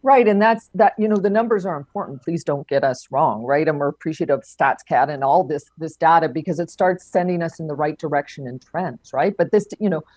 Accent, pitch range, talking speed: American, 150-190 Hz, 255 wpm